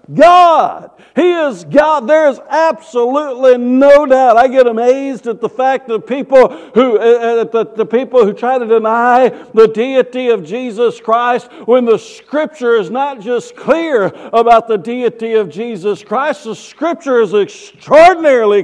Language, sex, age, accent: English, male, 60-79, American